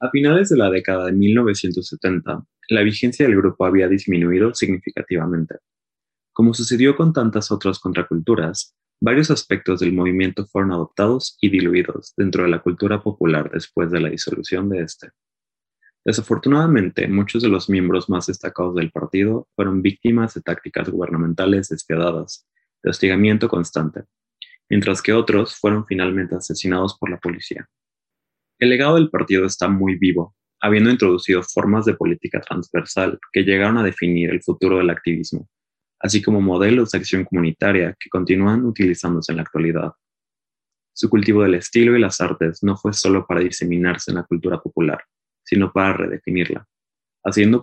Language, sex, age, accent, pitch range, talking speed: Spanish, male, 20-39, Mexican, 90-105 Hz, 150 wpm